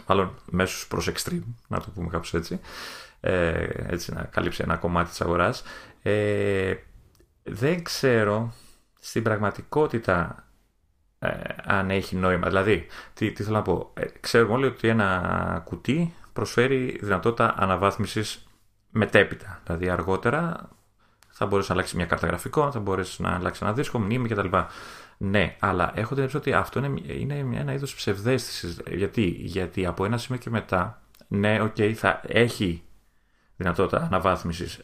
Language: Greek